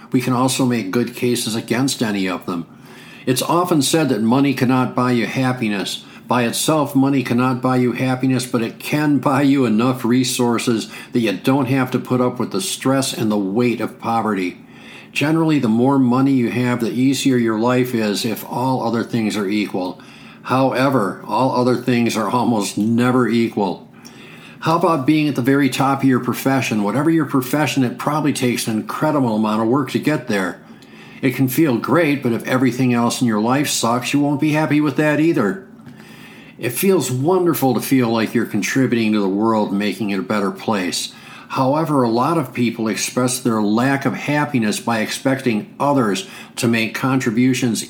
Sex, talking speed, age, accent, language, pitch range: male, 185 wpm, 50-69, American, English, 115-135 Hz